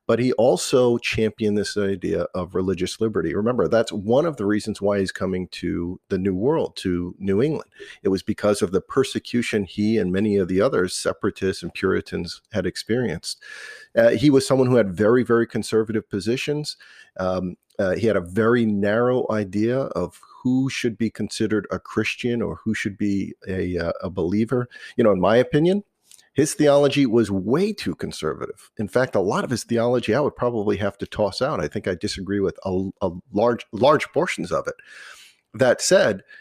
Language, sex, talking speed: English, male, 190 wpm